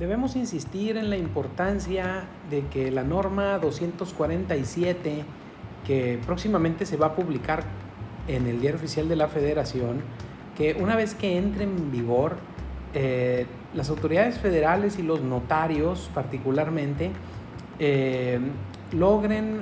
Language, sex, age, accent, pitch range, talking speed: Spanish, male, 40-59, Mexican, 125-175 Hz, 120 wpm